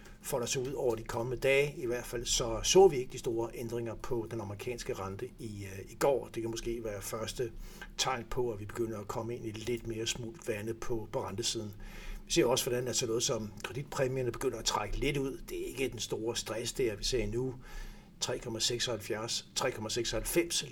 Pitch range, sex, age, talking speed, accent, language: 105-120 Hz, male, 60-79, 210 wpm, native, Danish